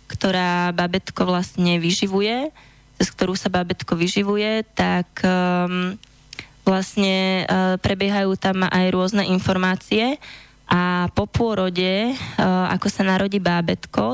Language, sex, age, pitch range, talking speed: Slovak, female, 20-39, 175-195 Hz, 110 wpm